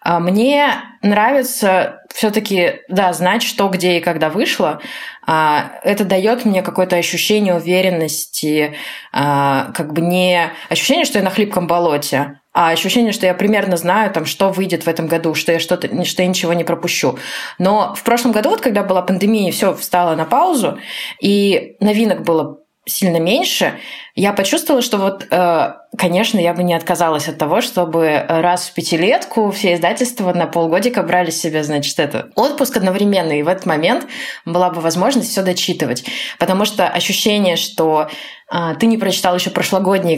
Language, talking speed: Russian, 155 wpm